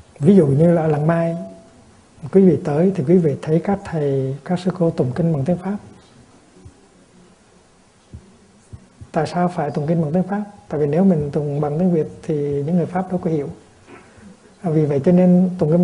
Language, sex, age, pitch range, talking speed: Vietnamese, male, 60-79, 145-175 Hz, 195 wpm